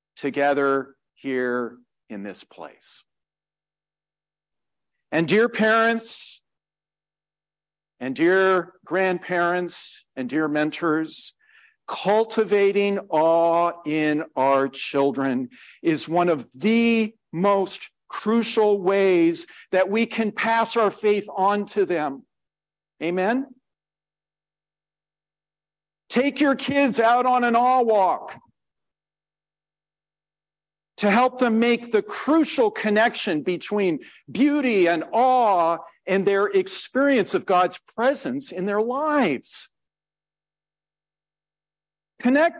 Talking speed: 90 wpm